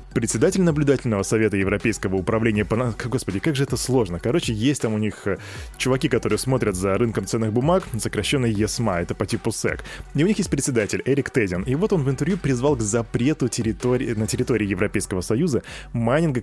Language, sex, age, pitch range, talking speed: Russian, male, 20-39, 105-145 Hz, 185 wpm